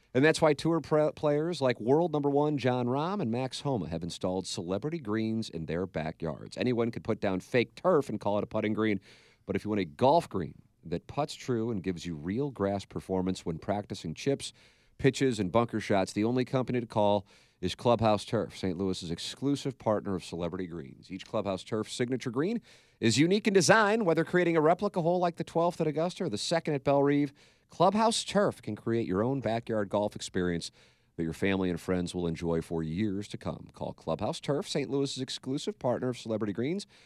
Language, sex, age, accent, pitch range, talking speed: English, male, 40-59, American, 95-140 Hz, 205 wpm